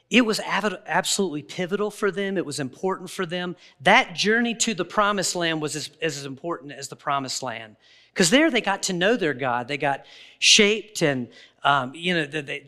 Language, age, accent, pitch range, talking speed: English, 40-59, American, 150-210 Hz, 200 wpm